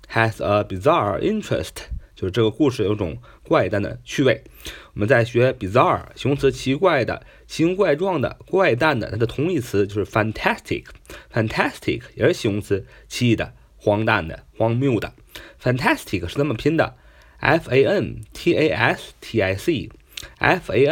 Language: Chinese